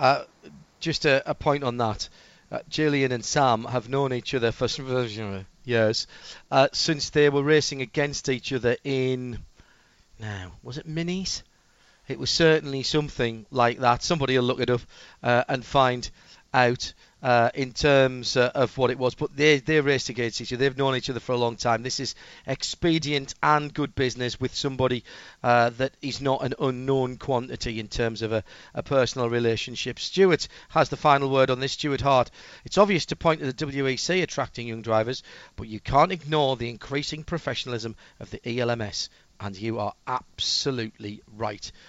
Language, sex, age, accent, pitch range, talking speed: English, male, 40-59, British, 120-150 Hz, 180 wpm